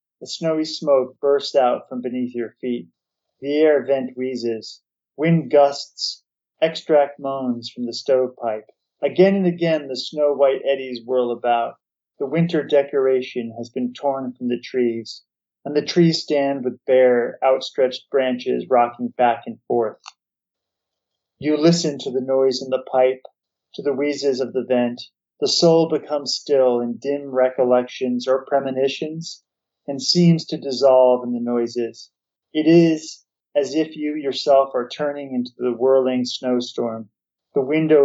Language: English